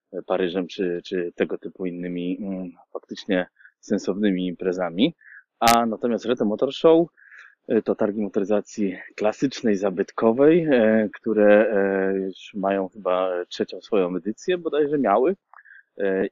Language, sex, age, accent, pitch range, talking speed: Polish, male, 20-39, native, 90-105 Hz, 120 wpm